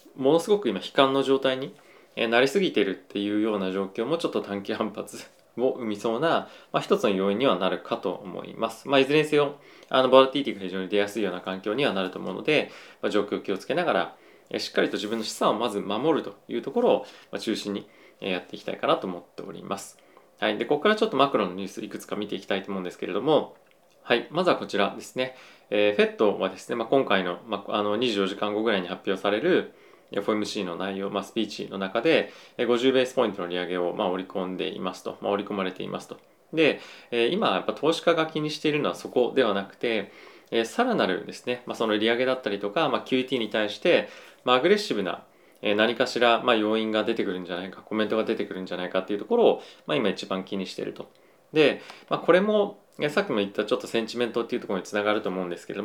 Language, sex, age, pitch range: Japanese, male, 20-39, 100-130 Hz